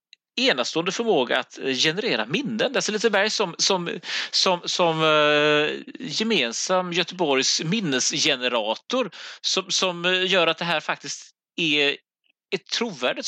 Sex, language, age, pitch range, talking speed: male, Swedish, 30-49, 145-185 Hz, 120 wpm